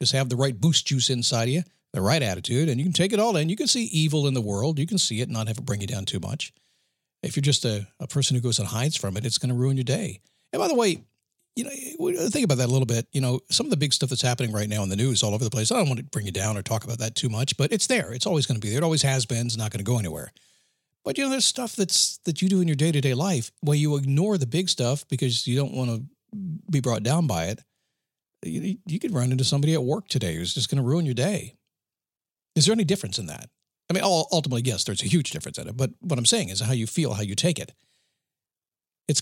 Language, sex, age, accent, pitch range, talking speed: English, male, 50-69, American, 120-160 Hz, 295 wpm